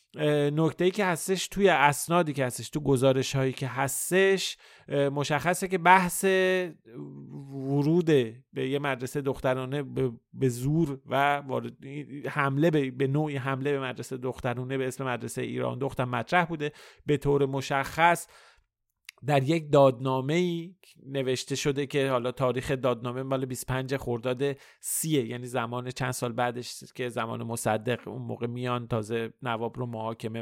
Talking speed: 135 wpm